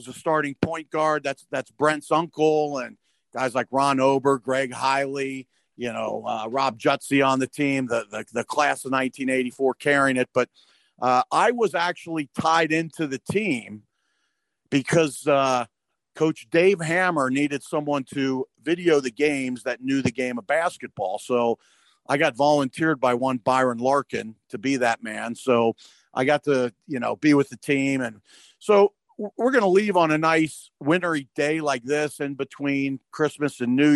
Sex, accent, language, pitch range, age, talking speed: male, American, English, 130-160 Hz, 50-69, 175 wpm